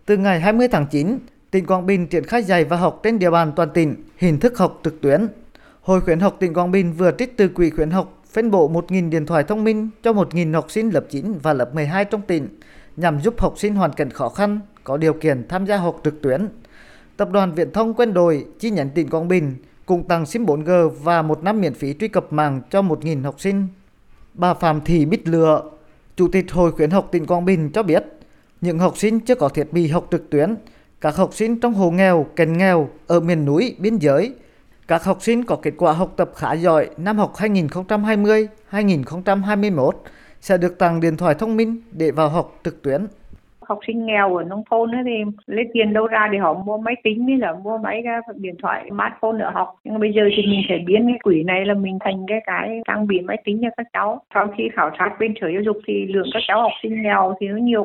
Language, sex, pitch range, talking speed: Vietnamese, male, 170-215 Hz, 235 wpm